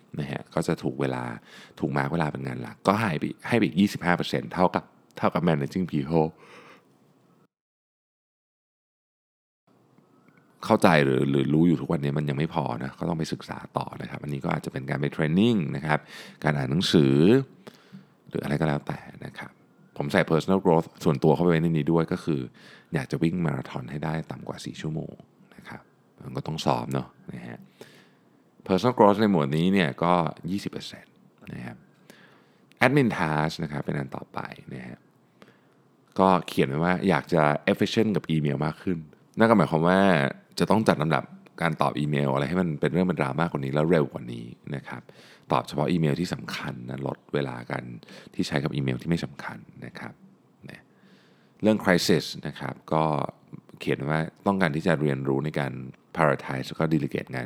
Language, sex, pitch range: Thai, male, 70-85 Hz